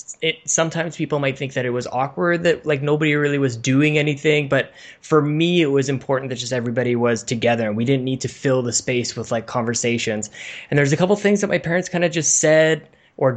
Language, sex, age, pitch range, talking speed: English, male, 20-39, 125-155 Hz, 225 wpm